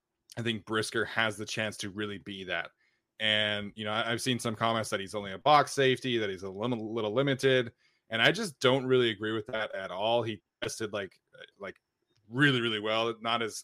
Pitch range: 105-120 Hz